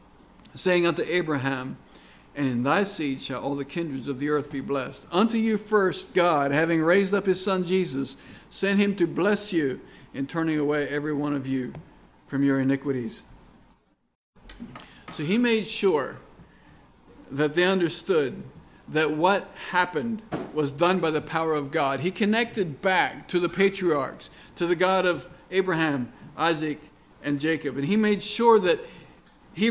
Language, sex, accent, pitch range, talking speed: English, male, American, 145-190 Hz, 160 wpm